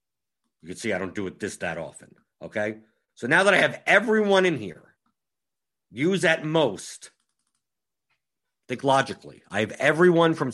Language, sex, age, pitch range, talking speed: English, male, 50-69, 120-170 Hz, 160 wpm